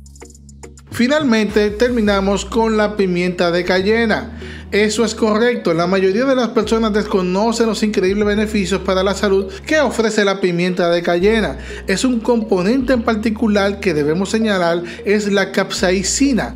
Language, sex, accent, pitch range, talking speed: Spanish, male, Venezuelan, 180-220 Hz, 140 wpm